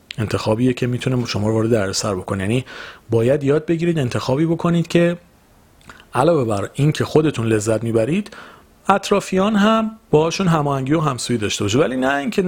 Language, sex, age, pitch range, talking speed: Persian, male, 40-59, 110-150 Hz, 155 wpm